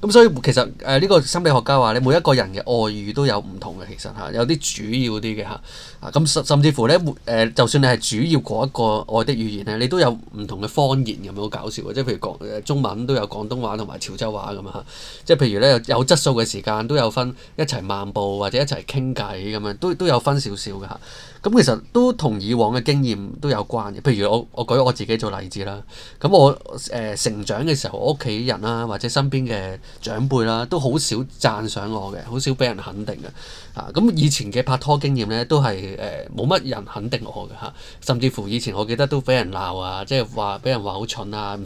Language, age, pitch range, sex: Chinese, 20-39, 105-135 Hz, male